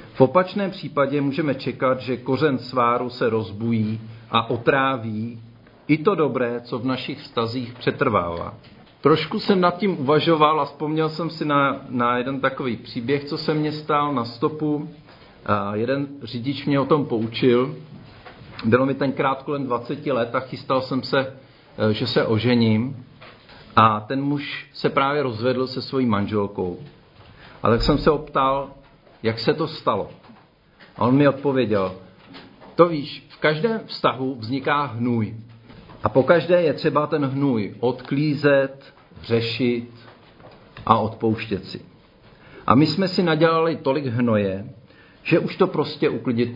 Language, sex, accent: Czech, male, native